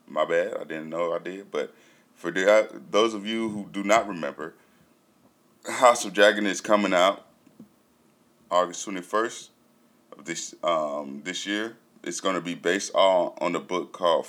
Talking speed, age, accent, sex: 170 wpm, 20-39, American, male